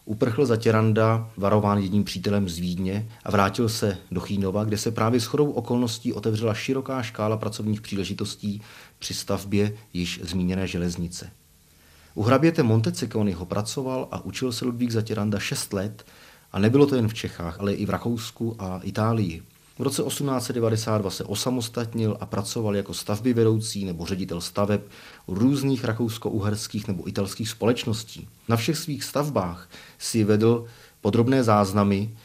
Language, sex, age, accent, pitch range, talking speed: Czech, male, 30-49, native, 95-115 Hz, 145 wpm